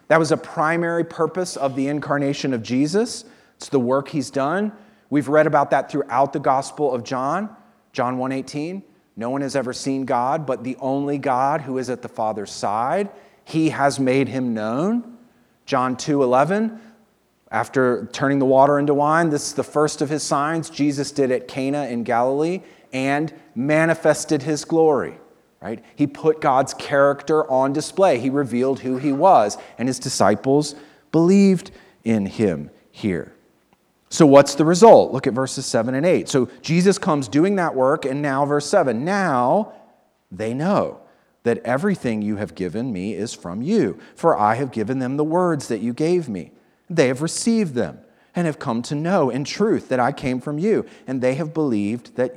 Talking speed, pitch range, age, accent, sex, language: 180 wpm, 130-160 Hz, 30-49, American, male, English